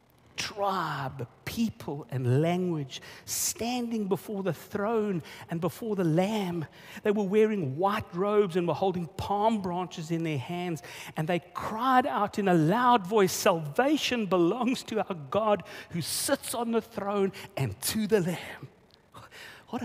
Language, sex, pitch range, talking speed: English, male, 130-200 Hz, 145 wpm